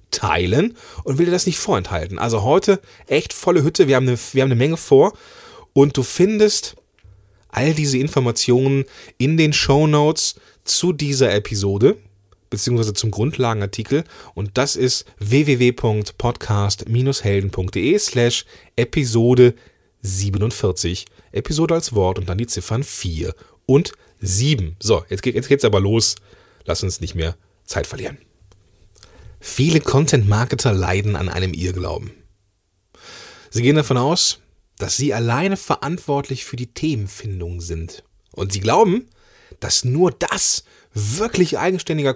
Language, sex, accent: German, male, German